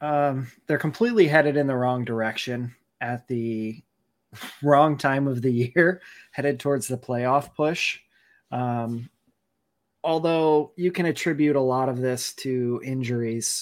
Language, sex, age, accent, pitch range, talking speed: English, male, 20-39, American, 120-140 Hz, 135 wpm